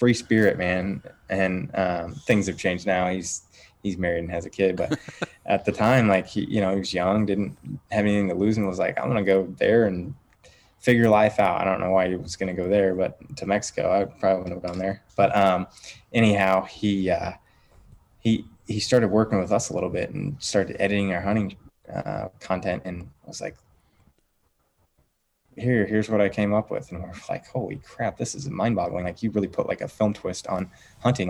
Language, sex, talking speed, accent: English, male, 215 wpm, American